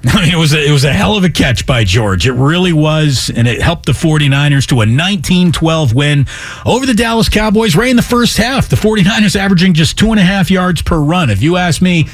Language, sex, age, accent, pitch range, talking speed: English, male, 40-59, American, 125-180 Hz, 225 wpm